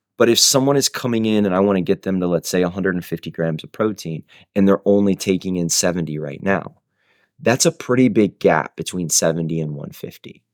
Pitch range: 90-115 Hz